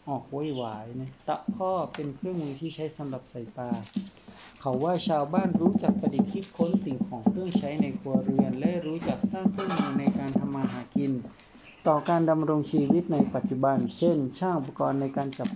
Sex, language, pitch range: male, Thai, 130-185 Hz